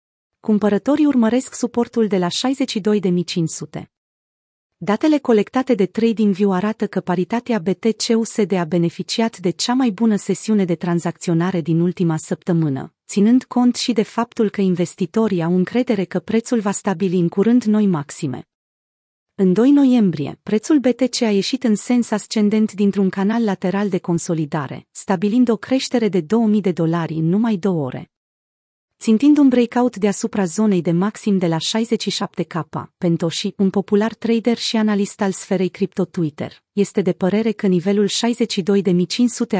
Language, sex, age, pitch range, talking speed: Romanian, female, 30-49, 180-225 Hz, 140 wpm